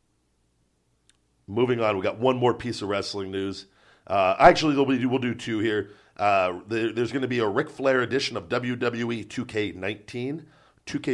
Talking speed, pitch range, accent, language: 170 wpm, 105-150 Hz, American, English